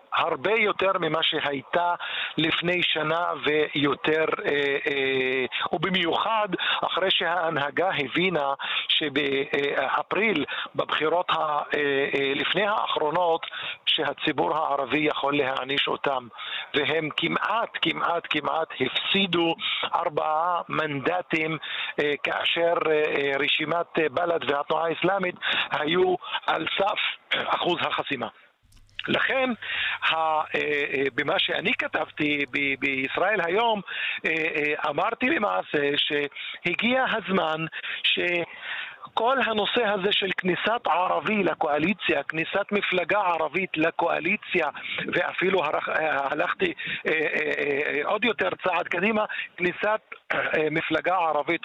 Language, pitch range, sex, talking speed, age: Hebrew, 150-205 Hz, male, 90 wpm, 50-69